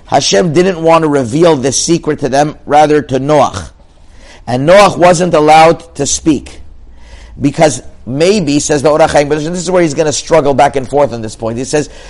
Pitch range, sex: 140-175 Hz, male